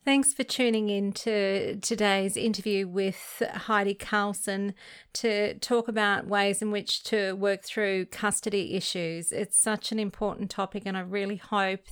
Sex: female